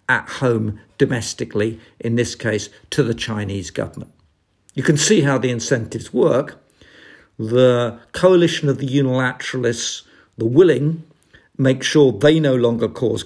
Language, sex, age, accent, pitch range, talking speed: English, male, 50-69, British, 105-140 Hz, 135 wpm